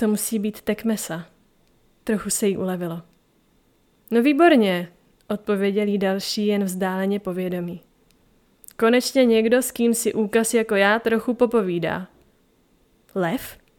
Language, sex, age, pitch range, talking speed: Czech, female, 20-39, 195-230 Hz, 115 wpm